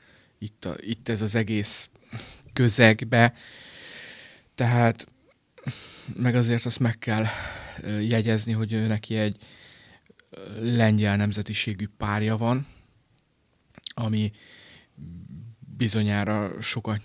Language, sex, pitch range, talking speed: Hungarian, male, 105-115 Hz, 85 wpm